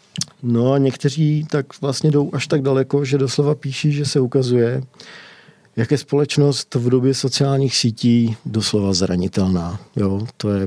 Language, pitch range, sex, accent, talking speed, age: Czech, 105-130 Hz, male, native, 145 wpm, 50-69